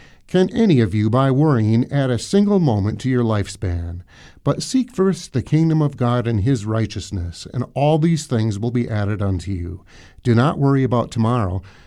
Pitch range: 105-150 Hz